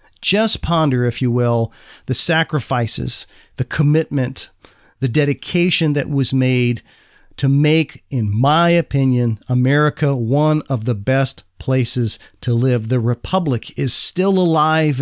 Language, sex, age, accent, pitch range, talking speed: English, male, 40-59, American, 120-160 Hz, 130 wpm